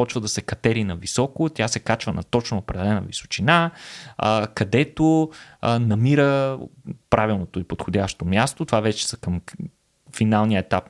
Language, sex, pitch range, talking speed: Bulgarian, male, 100-135 Hz, 150 wpm